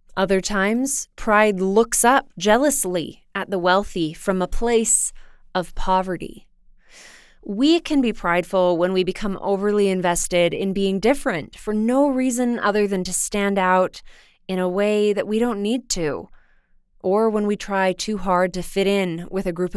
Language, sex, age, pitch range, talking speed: English, female, 20-39, 185-225 Hz, 165 wpm